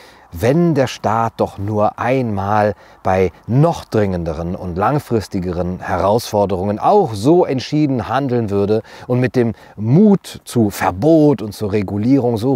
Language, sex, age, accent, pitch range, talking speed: German, male, 40-59, German, 90-115 Hz, 130 wpm